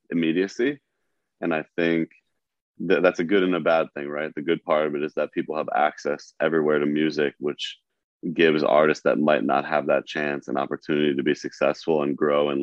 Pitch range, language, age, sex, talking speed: 75-80 Hz, English, 20-39, male, 205 wpm